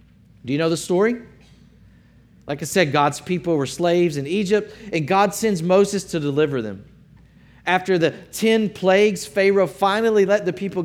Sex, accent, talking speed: male, American, 165 wpm